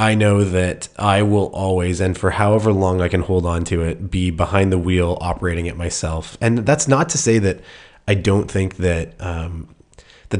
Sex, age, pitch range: male, 20-39, 90-105 Hz